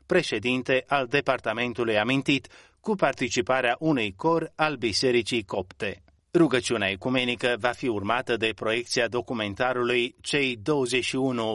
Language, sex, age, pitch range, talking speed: Romanian, male, 30-49, 110-135 Hz, 110 wpm